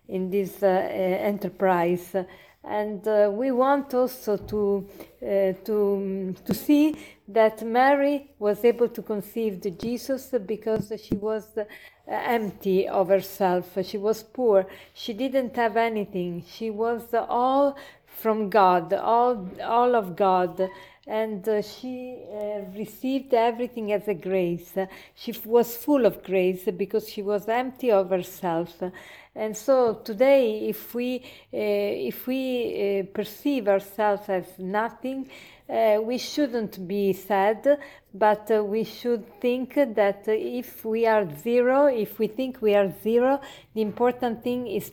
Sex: female